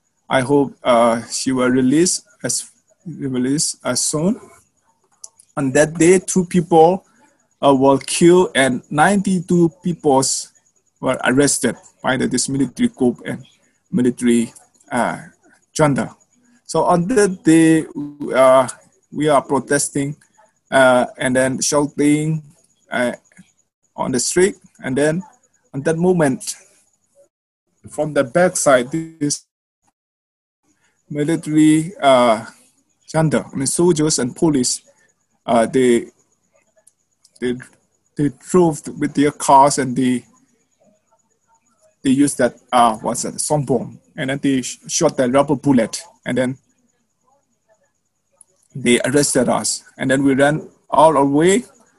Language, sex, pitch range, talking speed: Indonesian, male, 130-175 Hz, 115 wpm